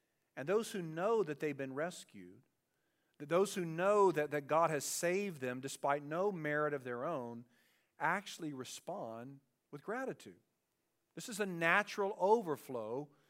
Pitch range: 125-155 Hz